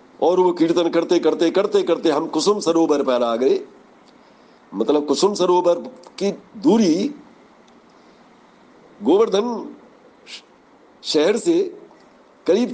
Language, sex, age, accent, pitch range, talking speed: Hindi, male, 60-79, native, 165-275 Hz, 105 wpm